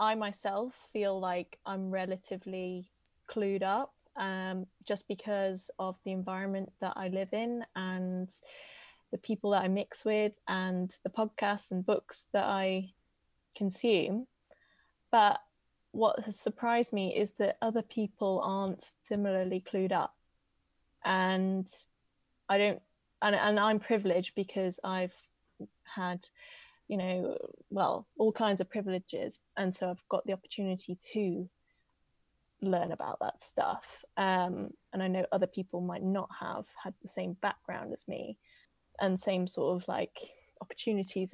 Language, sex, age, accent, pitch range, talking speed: English, female, 20-39, British, 185-215 Hz, 140 wpm